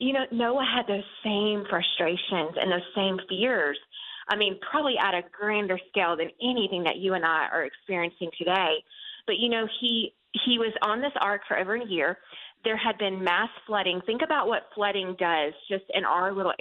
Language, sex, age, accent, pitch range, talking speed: English, female, 30-49, American, 190-250 Hz, 195 wpm